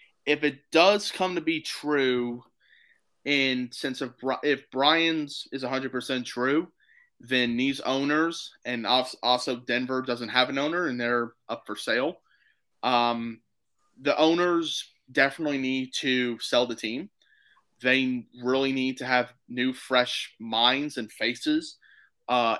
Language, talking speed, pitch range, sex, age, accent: English, 135 wpm, 120-135 Hz, male, 20-39, American